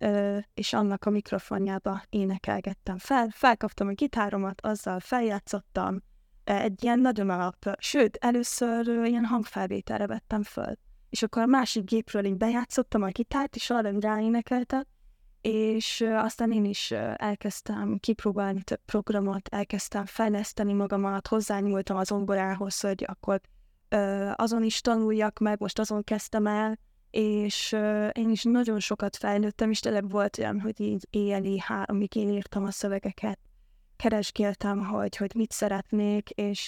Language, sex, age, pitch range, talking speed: Hungarian, female, 10-29, 200-225 Hz, 135 wpm